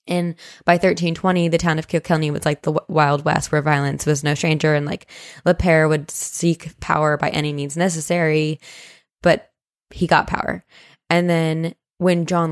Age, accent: 10-29, American